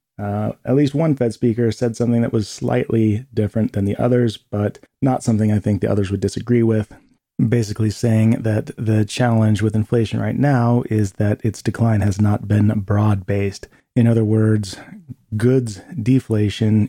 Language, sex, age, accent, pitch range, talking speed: English, male, 30-49, American, 100-115 Hz, 165 wpm